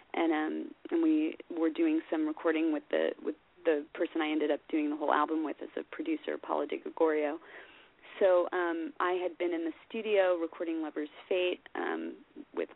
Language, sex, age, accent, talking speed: English, female, 30-49, American, 190 wpm